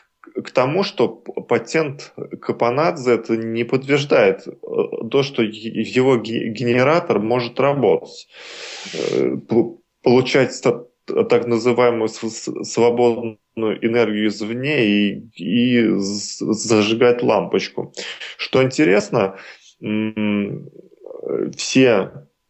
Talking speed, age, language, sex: 70 wpm, 20-39, Russian, male